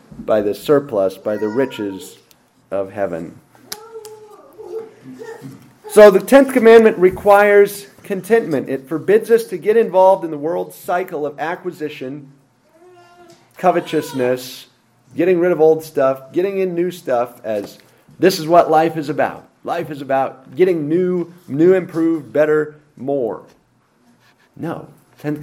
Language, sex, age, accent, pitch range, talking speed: English, male, 40-59, American, 140-195 Hz, 125 wpm